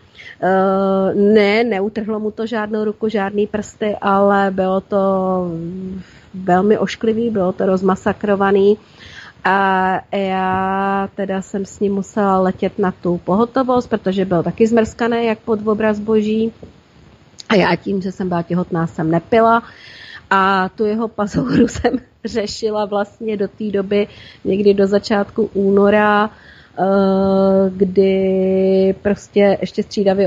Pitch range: 190-215 Hz